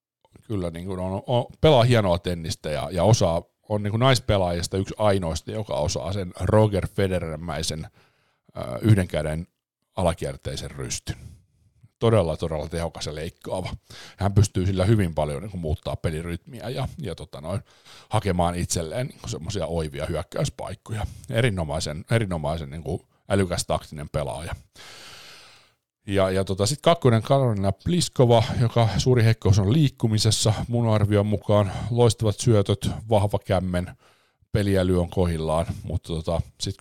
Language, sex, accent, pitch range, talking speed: Finnish, male, native, 85-110 Hz, 135 wpm